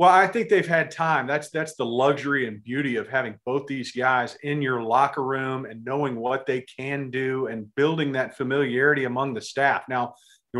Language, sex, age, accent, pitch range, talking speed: English, male, 40-59, American, 130-160 Hz, 205 wpm